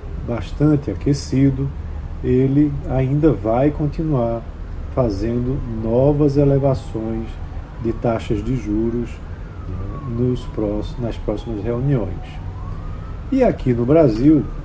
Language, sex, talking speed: Portuguese, male, 95 wpm